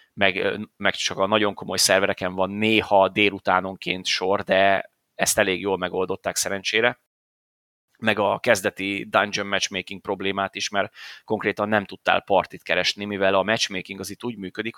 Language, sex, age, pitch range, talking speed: Hungarian, male, 30-49, 95-120 Hz, 150 wpm